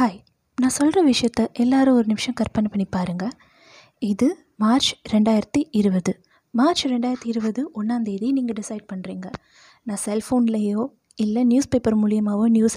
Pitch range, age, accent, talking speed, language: 210-255 Hz, 20-39, native, 130 wpm, Tamil